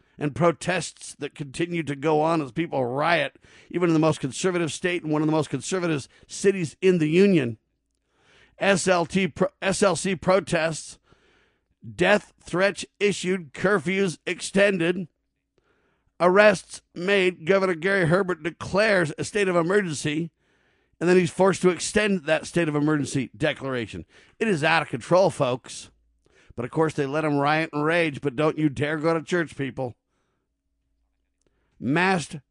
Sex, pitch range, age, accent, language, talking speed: male, 140-180 Hz, 50-69, American, English, 145 wpm